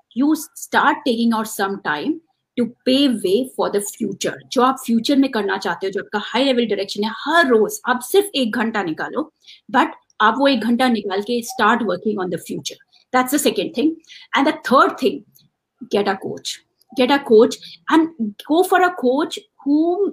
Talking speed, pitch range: 190 wpm, 215-275 Hz